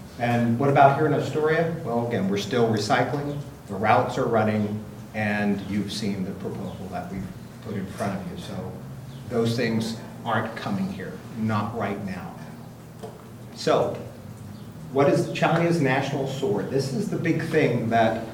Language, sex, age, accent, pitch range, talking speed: English, male, 40-59, American, 105-135 Hz, 155 wpm